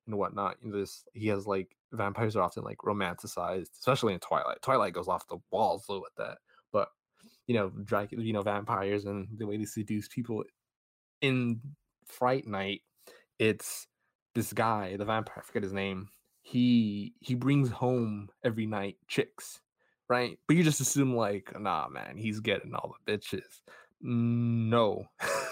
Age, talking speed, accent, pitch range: 20-39, 170 wpm, American, 100-125 Hz